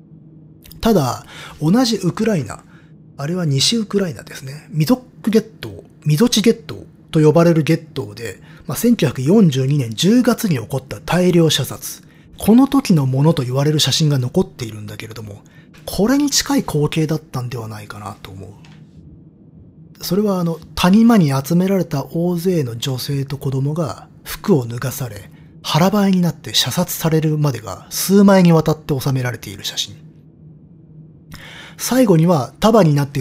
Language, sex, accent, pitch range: Japanese, male, native, 135-170 Hz